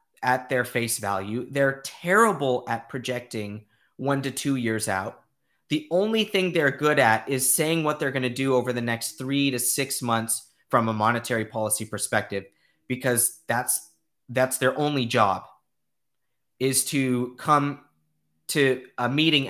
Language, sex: English, male